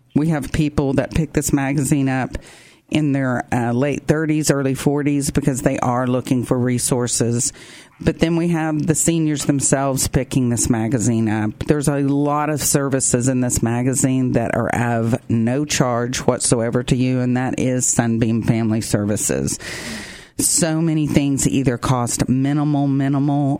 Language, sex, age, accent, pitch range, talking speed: English, female, 40-59, American, 125-145 Hz, 155 wpm